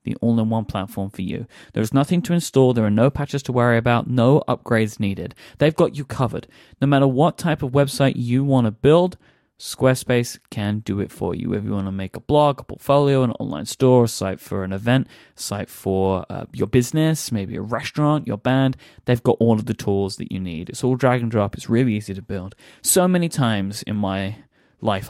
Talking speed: 220 wpm